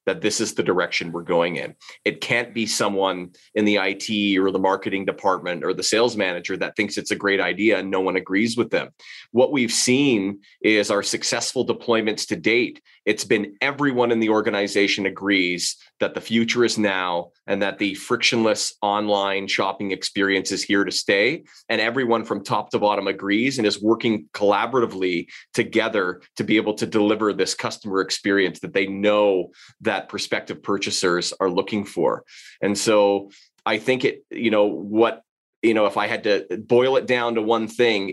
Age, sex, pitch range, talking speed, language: 30-49, male, 100-110 Hz, 185 wpm, English